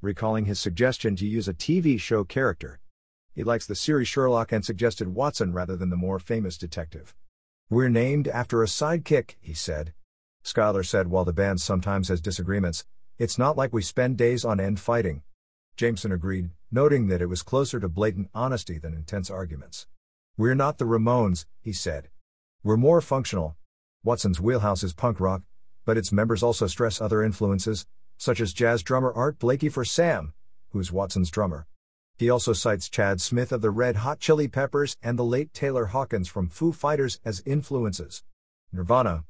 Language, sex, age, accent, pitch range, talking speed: English, male, 50-69, American, 90-120 Hz, 175 wpm